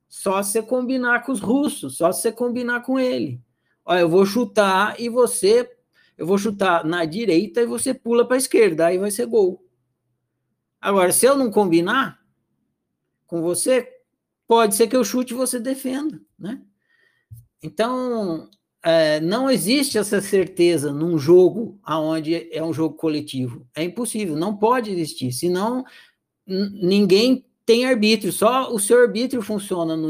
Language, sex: Portuguese, male